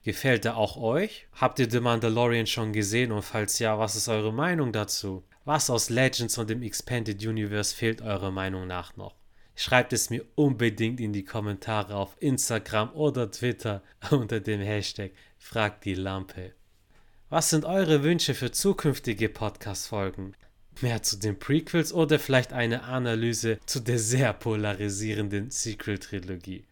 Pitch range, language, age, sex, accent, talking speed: 105-135 Hz, German, 30-49, male, German, 150 wpm